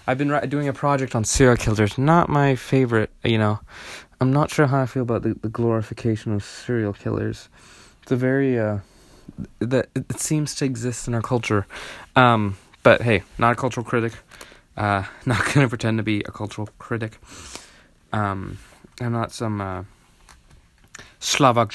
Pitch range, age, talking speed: 110-140 Hz, 20-39, 165 wpm